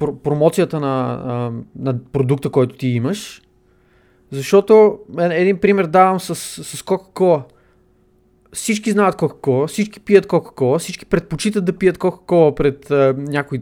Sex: male